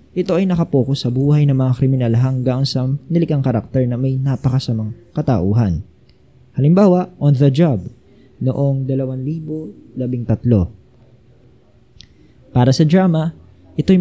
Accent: native